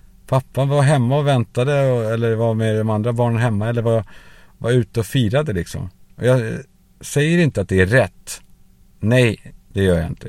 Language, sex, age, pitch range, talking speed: Swedish, male, 50-69, 90-115 Hz, 180 wpm